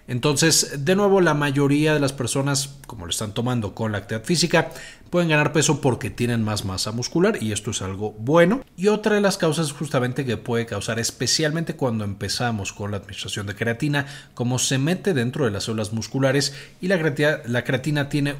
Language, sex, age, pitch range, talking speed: Spanish, male, 40-59, 105-145 Hz, 195 wpm